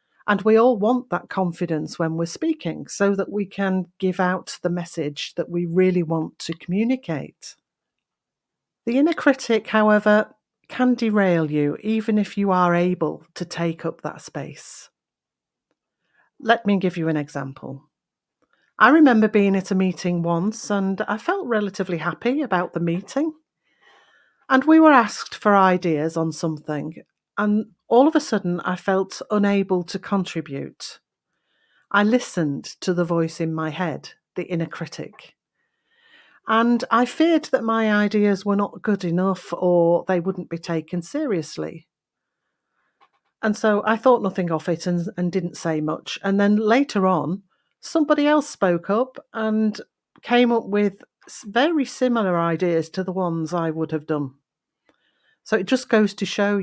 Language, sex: English, female